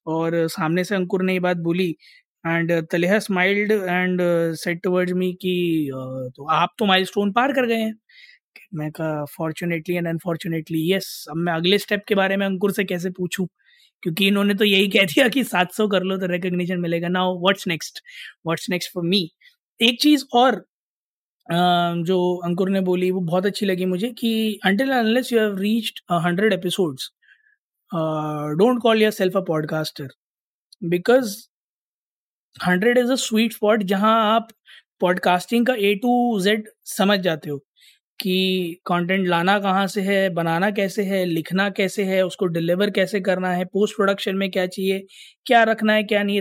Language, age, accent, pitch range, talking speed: Hindi, 20-39, native, 180-205 Hz, 150 wpm